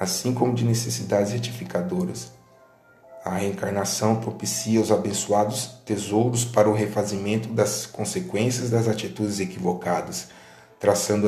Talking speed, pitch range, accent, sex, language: 105 wpm, 105-120 Hz, Brazilian, male, Portuguese